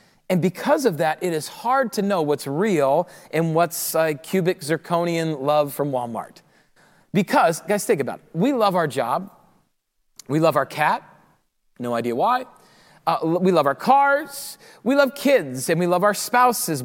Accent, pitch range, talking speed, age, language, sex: American, 165-230 Hz, 170 wpm, 30-49, English, male